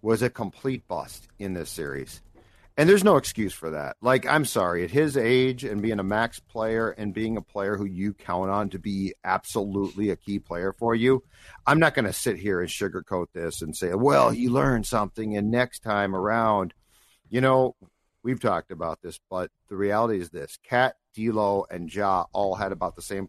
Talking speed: 205 wpm